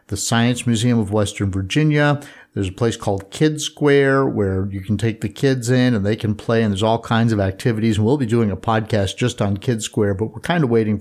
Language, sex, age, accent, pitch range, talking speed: English, male, 50-69, American, 105-125 Hz, 240 wpm